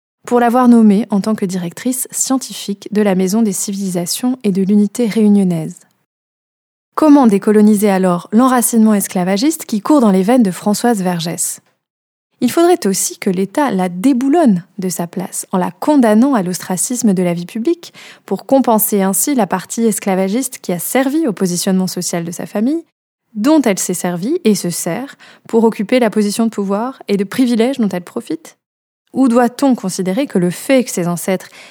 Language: French